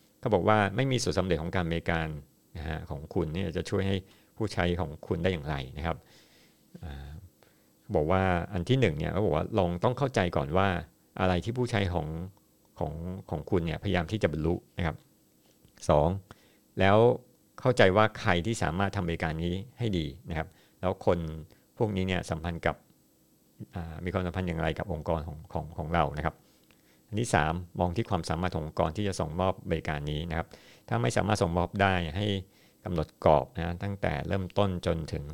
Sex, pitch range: male, 80-100 Hz